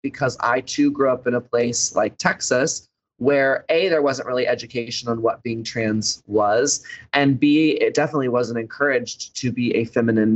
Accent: American